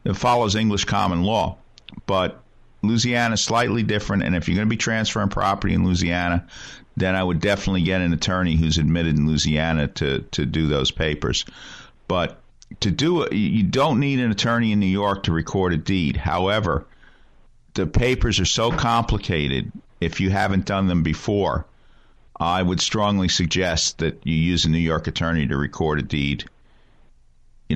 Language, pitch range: English, 85-110 Hz